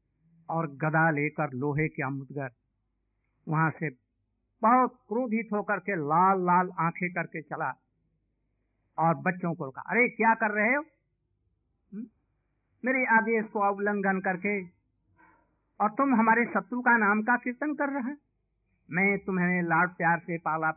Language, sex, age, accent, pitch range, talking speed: Hindi, male, 60-79, native, 155-210 Hz, 135 wpm